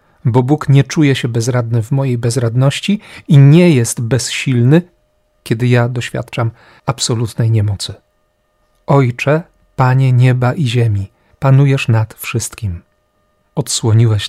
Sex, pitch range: male, 115-140 Hz